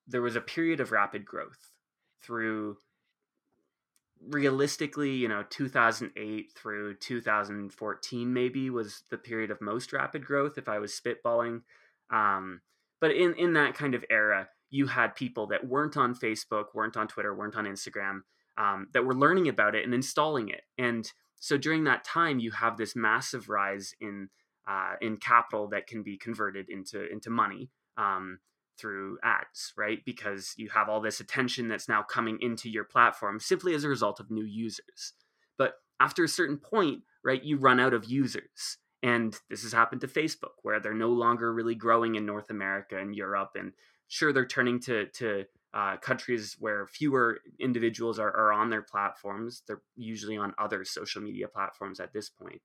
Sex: male